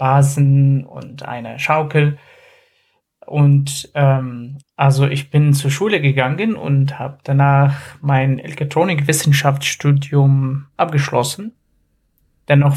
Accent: German